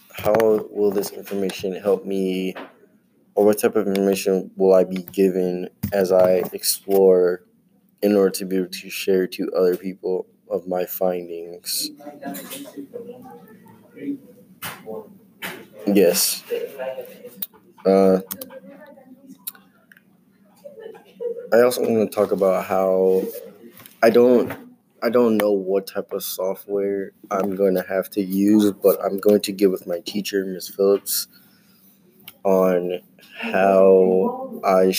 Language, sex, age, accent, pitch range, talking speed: English, male, 20-39, American, 95-145 Hz, 115 wpm